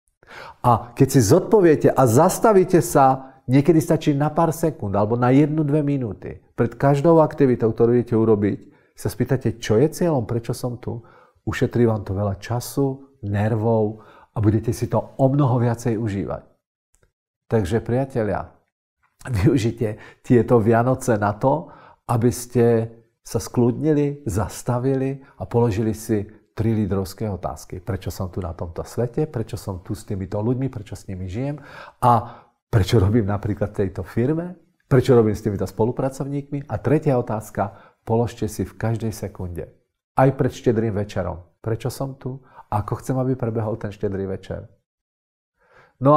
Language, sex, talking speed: Czech, male, 145 wpm